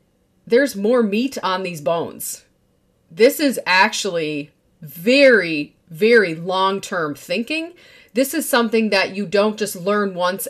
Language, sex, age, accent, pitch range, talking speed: English, female, 30-49, American, 185-240 Hz, 125 wpm